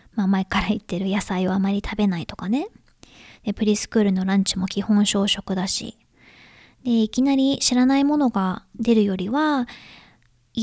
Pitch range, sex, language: 200-255 Hz, male, Japanese